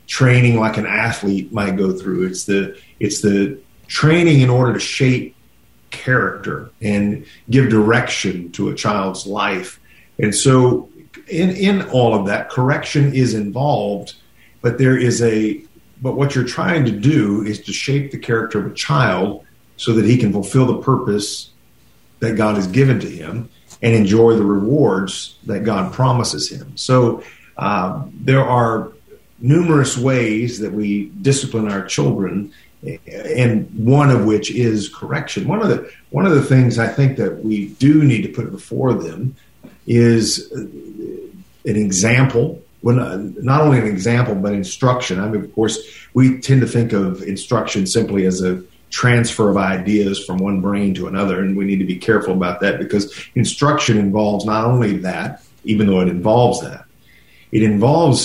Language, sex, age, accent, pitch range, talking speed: English, male, 50-69, American, 100-130 Hz, 165 wpm